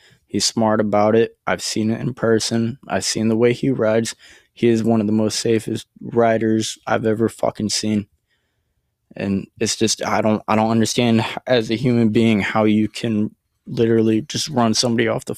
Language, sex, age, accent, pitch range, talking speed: English, male, 20-39, American, 105-115 Hz, 185 wpm